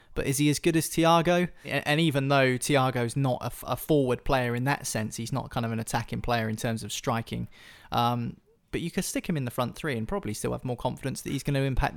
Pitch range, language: 120-145 Hz, English